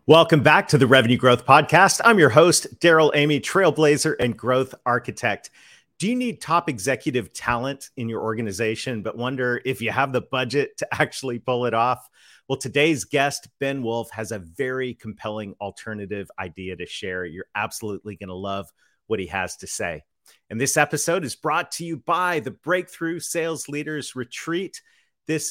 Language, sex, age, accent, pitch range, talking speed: English, male, 40-59, American, 110-145 Hz, 170 wpm